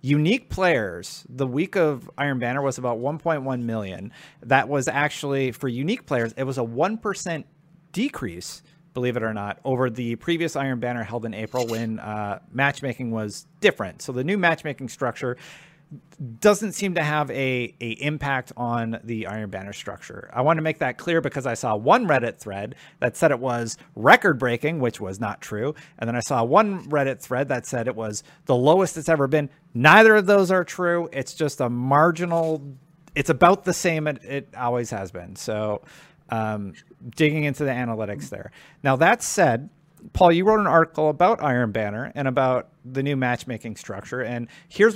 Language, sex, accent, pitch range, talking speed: English, male, American, 120-160 Hz, 185 wpm